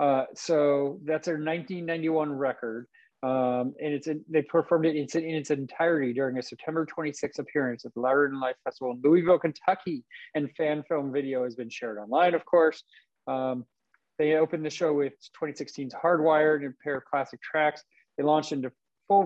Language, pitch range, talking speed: English, 125-155 Hz, 180 wpm